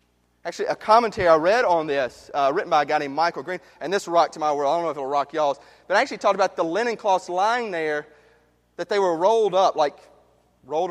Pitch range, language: 155-240 Hz, English